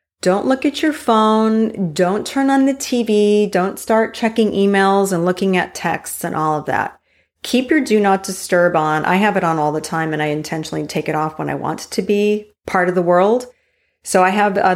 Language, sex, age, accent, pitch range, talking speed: English, female, 30-49, American, 170-210 Hz, 220 wpm